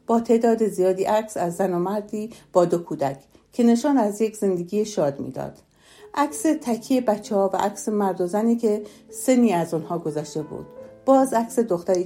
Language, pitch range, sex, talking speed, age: Persian, 165-235 Hz, female, 175 wpm, 60-79